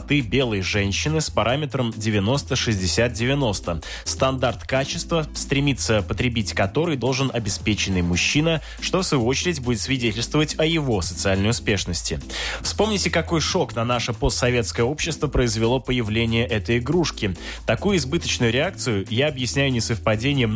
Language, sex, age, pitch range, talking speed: Russian, male, 20-39, 110-140 Hz, 120 wpm